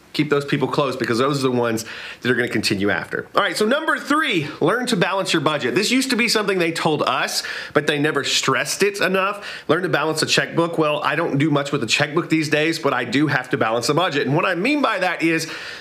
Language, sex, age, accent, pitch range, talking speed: English, male, 30-49, American, 145-180 Hz, 260 wpm